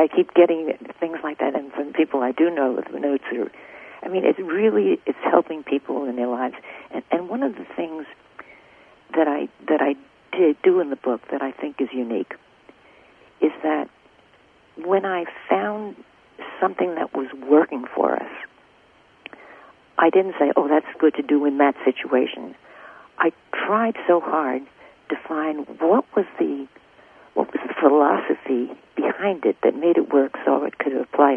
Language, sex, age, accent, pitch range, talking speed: English, female, 50-69, American, 135-175 Hz, 170 wpm